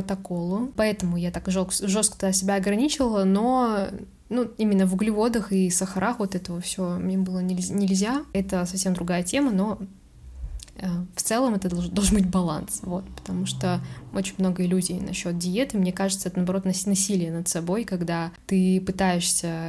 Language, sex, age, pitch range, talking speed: Russian, female, 10-29, 185-215 Hz, 150 wpm